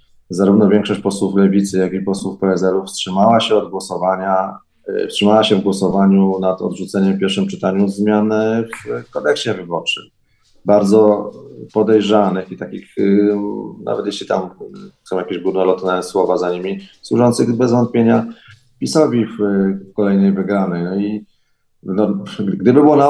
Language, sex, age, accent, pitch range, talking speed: Polish, male, 30-49, native, 95-115 Hz, 130 wpm